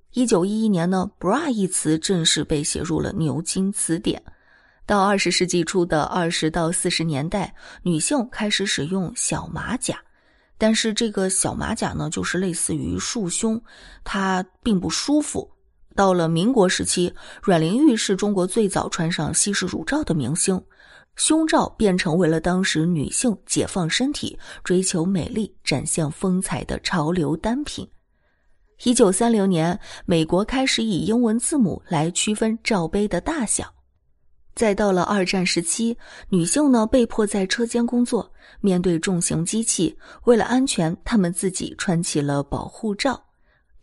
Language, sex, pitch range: Chinese, female, 170-225 Hz